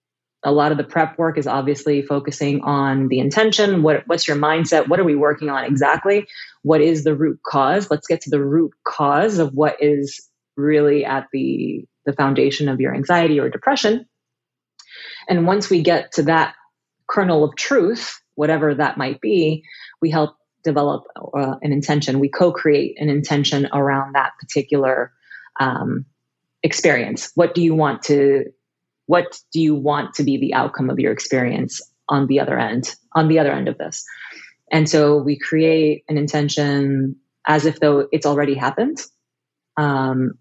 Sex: female